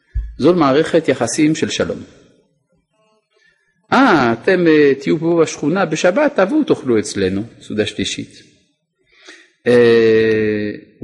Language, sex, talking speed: Hebrew, male, 100 wpm